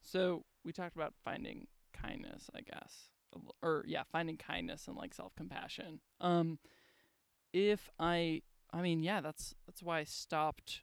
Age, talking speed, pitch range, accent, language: 20-39, 140 wpm, 150-175 Hz, American, English